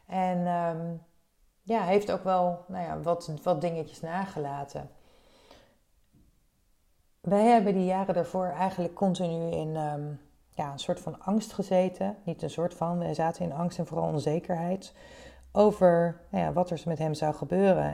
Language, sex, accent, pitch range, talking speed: Dutch, female, Dutch, 165-185 Hz, 135 wpm